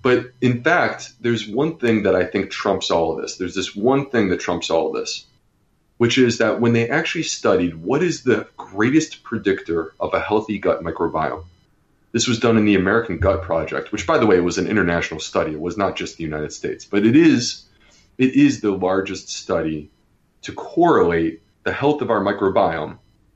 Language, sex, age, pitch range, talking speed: English, male, 30-49, 90-120 Hz, 195 wpm